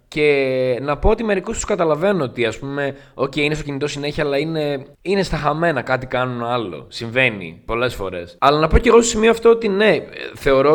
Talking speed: 205 wpm